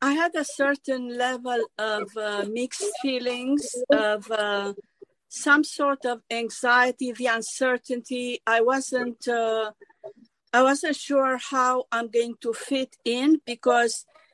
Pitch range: 230-275 Hz